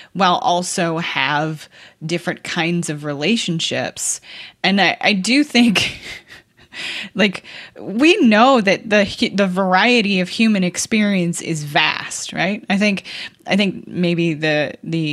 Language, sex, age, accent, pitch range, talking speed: English, female, 20-39, American, 160-215 Hz, 125 wpm